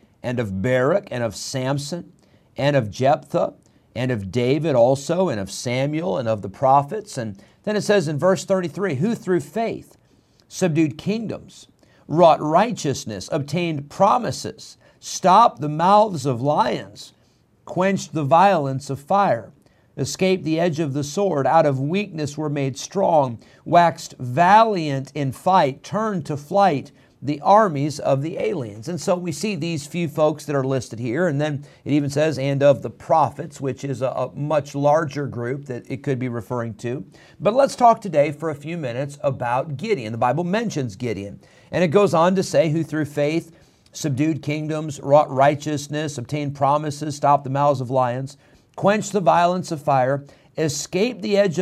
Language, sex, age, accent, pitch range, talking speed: English, male, 50-69, American, 135-175 Hz, 170 wpm